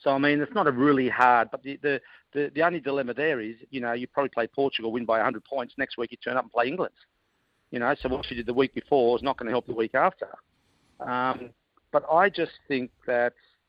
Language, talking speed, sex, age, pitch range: English, 250 wpm, male, 50-69, 120-155 Hz